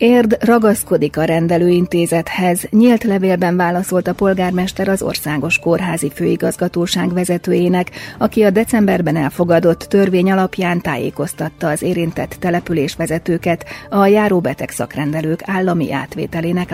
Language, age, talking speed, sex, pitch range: Hungarian, 30-49, 100 wpm, female, 150-185 Hz